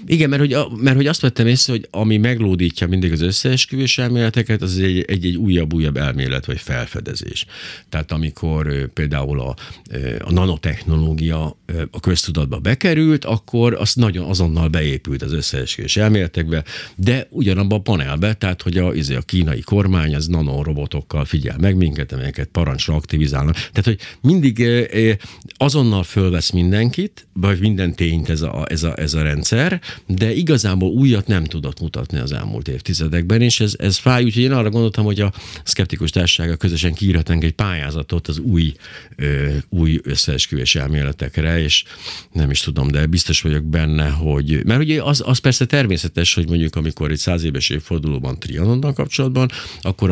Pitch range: 75-110 Hz